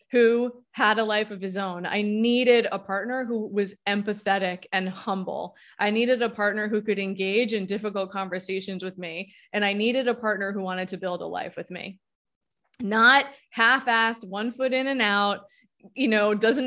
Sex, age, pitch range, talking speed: female, 20-39, 200-245 Hz, 185 wpm